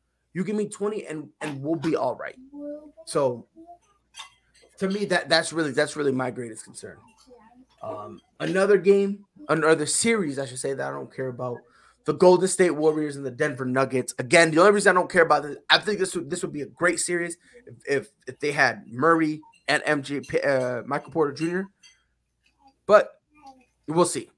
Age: 20-39